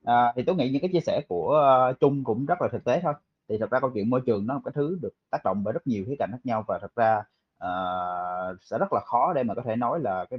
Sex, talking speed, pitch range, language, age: male, 310 wpm, 115-160 Hz, Vietnamese, 20-39